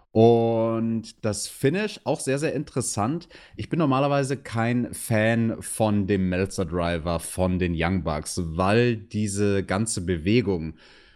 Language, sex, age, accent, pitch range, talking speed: German, male, 30-49, German, 95-115 Hz, 125 wpm